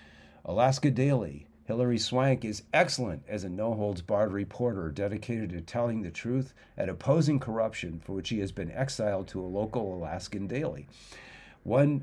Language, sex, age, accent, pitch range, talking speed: English, male, 50-69, American, 90-120 Hz, 160 wpm